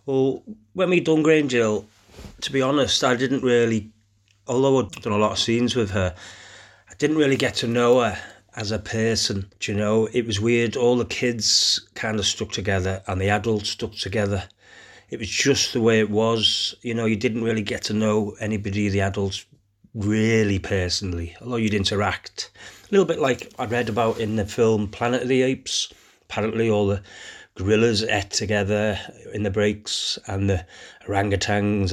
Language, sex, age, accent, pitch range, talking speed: English, male, 30-49, British, 100-120 Hz, 185 wpm